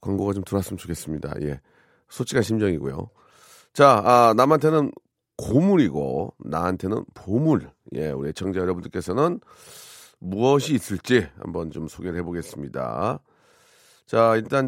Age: 40-59